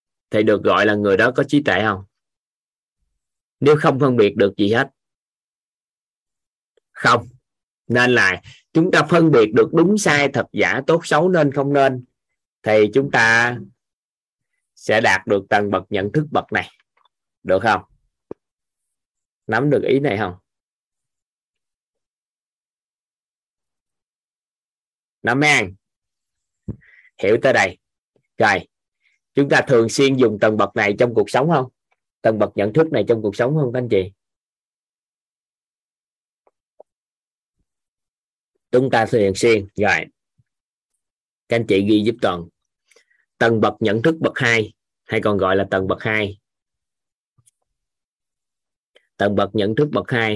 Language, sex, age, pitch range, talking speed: Vietnamese, male, 20-39, 100-140 Hz, 135 wpm